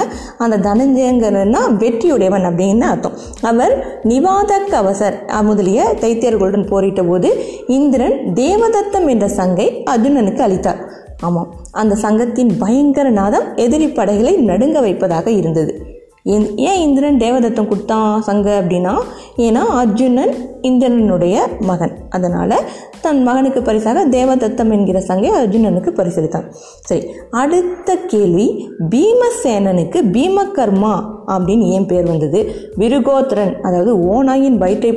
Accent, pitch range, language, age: native, 195-255 Hz, Tamil, 20-39